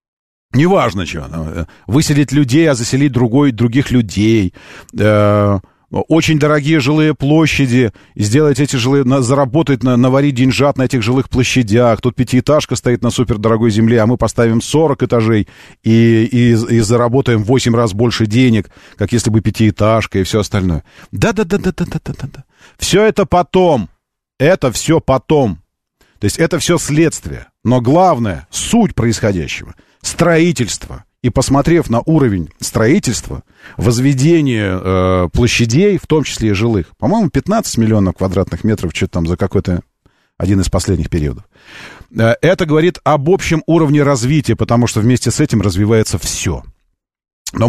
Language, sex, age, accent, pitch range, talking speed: Russian, male, 40-59, native, 105-145 Hz, 135 wpm